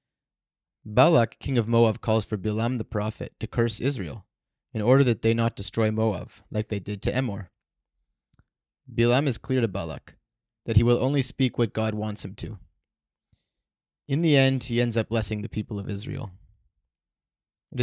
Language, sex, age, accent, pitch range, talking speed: English, male, 30-49, American, 105-125 Hz, 170 wpm